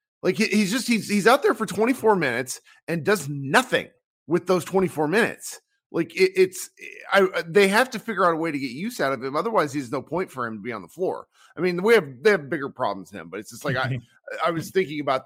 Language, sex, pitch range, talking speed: English, male, 130-190 Hz, 250 wpm